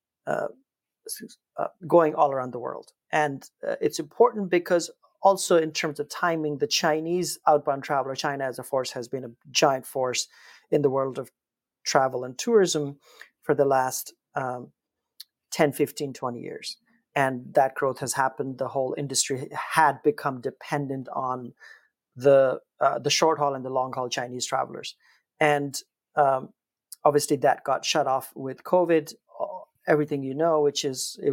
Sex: male